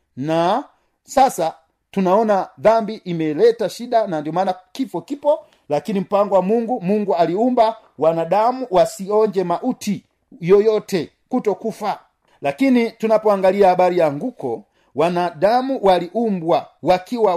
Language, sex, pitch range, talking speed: Swahili, male, 175-230 Hz, 105 wpm